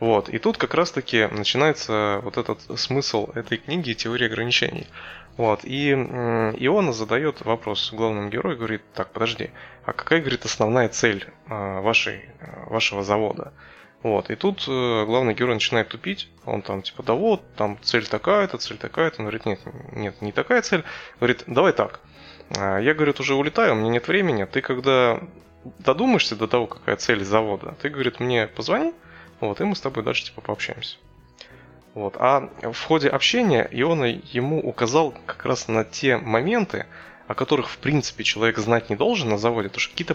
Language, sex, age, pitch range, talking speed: Russian, male, 20-39, 105-135 Hz, 160 wpm